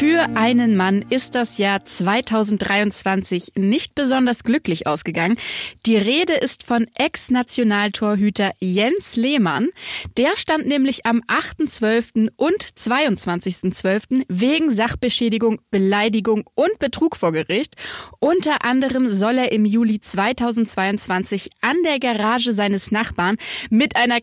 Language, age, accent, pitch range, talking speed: German, 20-39, German, 205-265 Hz, 115 wpm